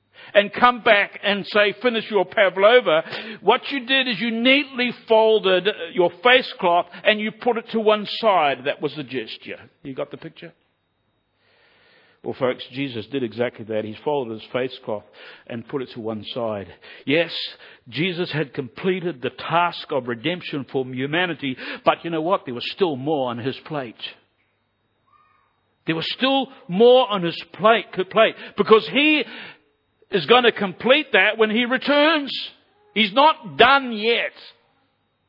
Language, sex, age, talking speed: English, male, 60-79, 160 wpm